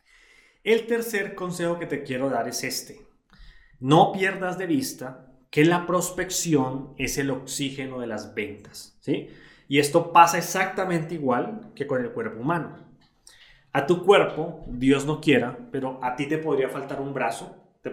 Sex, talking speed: male, 160 wpm